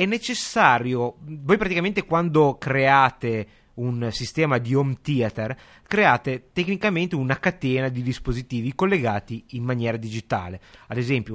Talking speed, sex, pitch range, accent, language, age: 120 wpm, male, 120-155 Hz, native, Italian, 30-49